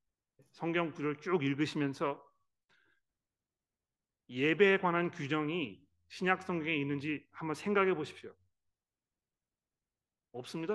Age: 40-59